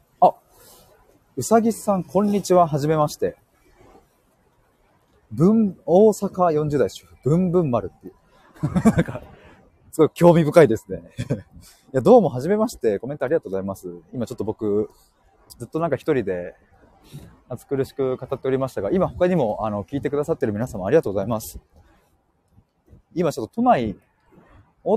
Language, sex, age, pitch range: Japanese, male, 30-49, 120-185 Hz